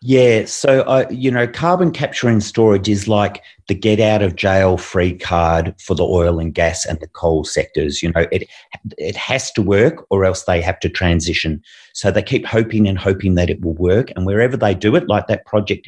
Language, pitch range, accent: English, 90-110 Hz, Australian